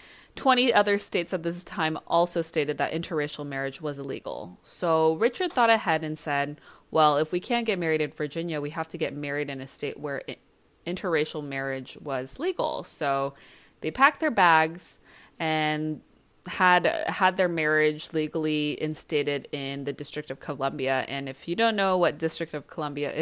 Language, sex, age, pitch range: English, female, 20-39, 145-185 Hz